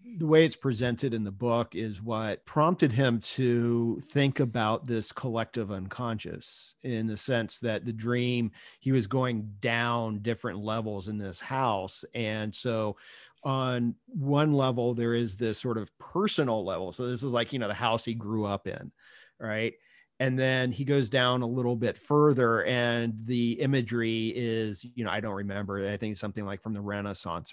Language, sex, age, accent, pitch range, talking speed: English, male, 40-59, American, 110-125 Hz, 180 wpm